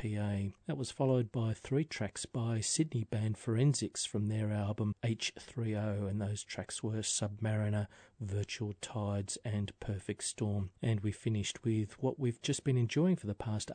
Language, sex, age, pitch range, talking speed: English, male, 40-59, 100-115 Hz, 155 wpm